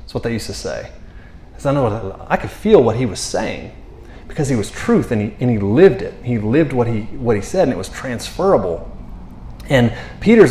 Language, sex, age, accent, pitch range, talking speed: English, male, 30-49, American, 105-160 Hz, 225 wpm